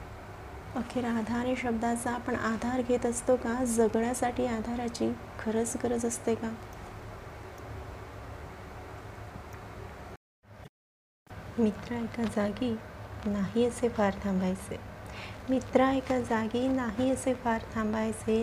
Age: 30-49